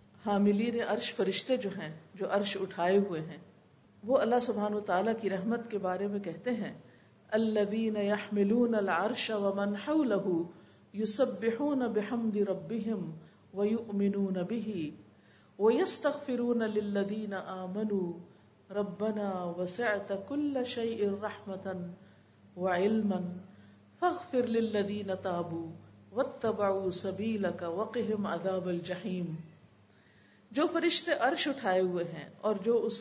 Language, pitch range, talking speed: Urdu, 190-240 Hz, 55 wpm